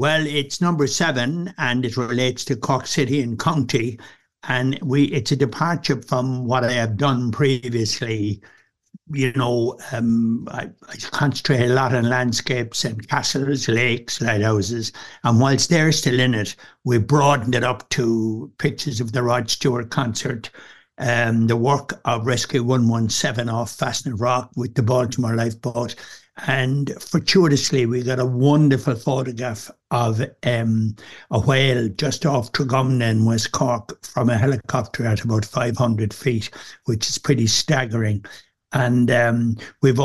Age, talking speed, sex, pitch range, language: 60-79, 150 wpm, male, 120-140 Hz, English